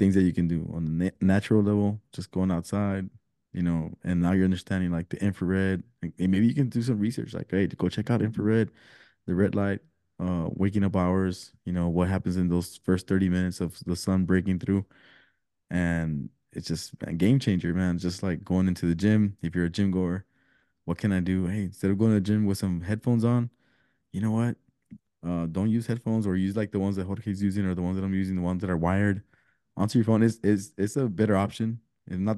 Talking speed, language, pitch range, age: 235 wpm, English, 90-105 Hz, 20-39